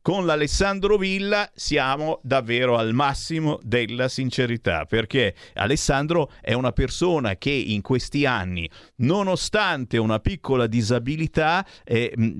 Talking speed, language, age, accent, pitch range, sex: 110 wpm, Italian, 50-69, native, 105-140 Hz, male